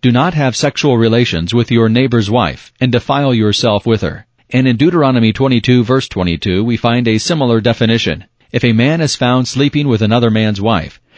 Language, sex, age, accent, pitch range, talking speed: English, male, 40-59, American, 105-125 Hz, 190 wpm